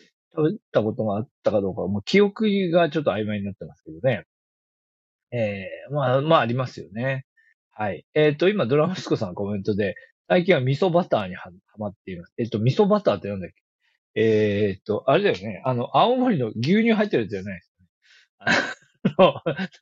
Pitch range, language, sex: 105-175 Hz, Japanese, male